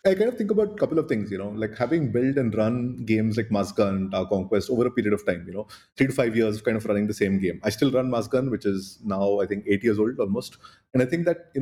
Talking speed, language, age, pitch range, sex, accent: 305 wpm, English, 30-49, 105-135 Hz, male, Indian